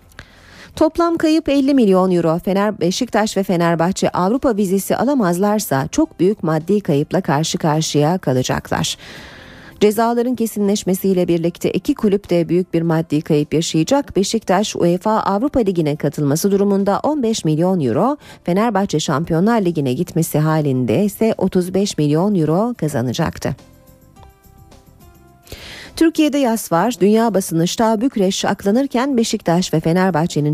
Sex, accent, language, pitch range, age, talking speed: female, native, Turkish, 165-220 Hz, 40-59, 115 wpm